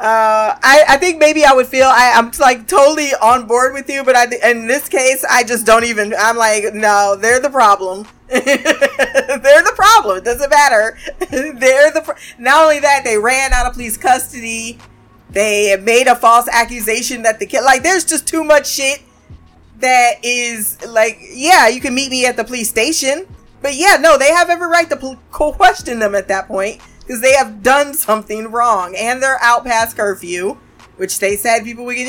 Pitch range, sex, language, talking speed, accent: 220-280 Hz, female, English, 195 wpm, American